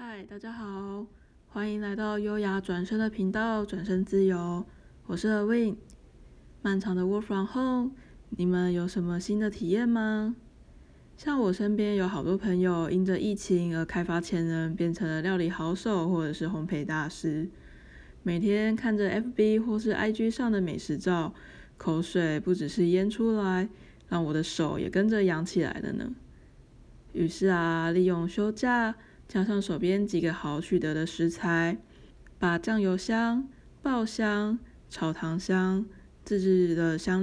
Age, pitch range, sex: 20-39, 170-210 Hz, female